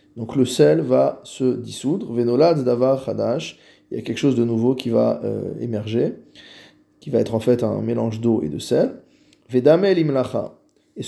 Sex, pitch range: male, 115-145 Hz